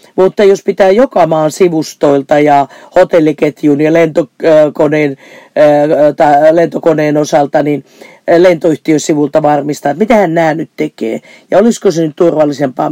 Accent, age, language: native, 40-59, Finnish